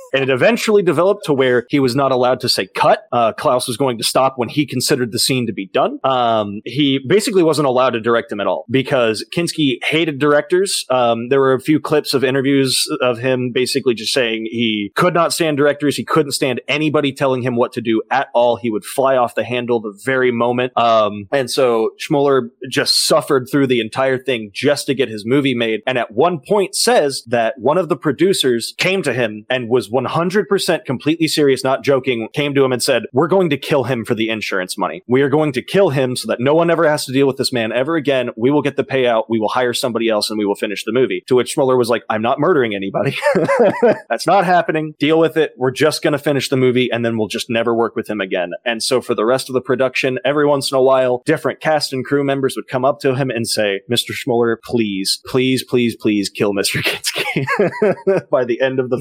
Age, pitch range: 30-49, 120-145 Hz